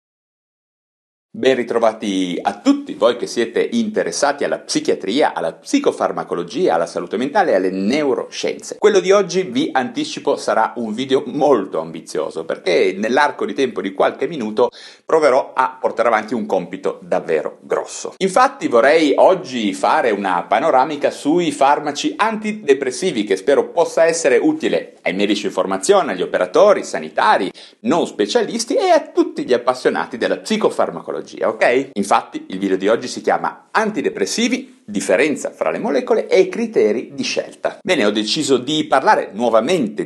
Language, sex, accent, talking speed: Italian, male, native, 145 wpm